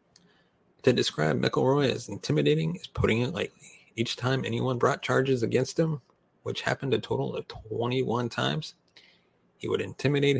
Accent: American